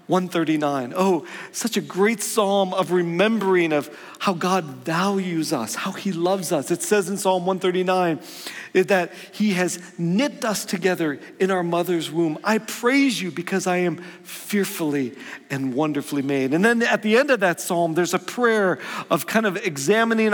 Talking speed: 170 wpm